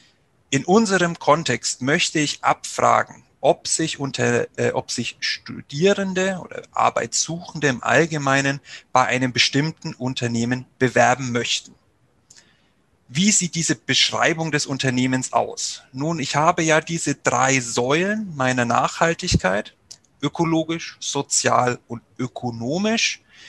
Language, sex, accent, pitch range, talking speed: German, male, German, 120-160 Hz, 100 wpm